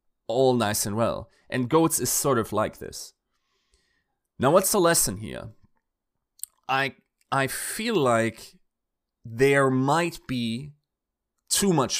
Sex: male